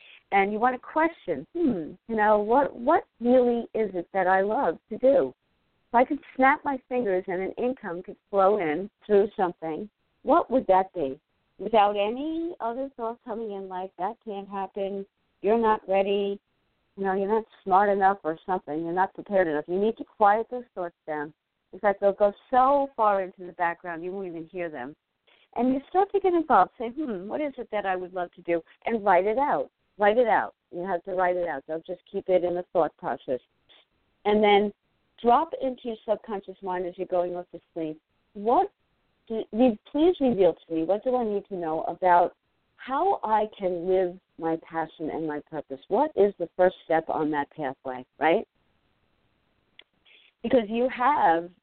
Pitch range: 170-225 Hz